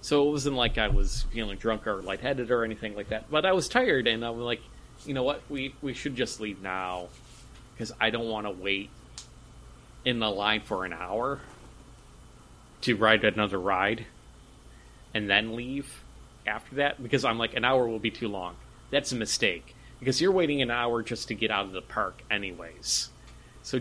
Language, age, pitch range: English, 30-49, 105-130 Hz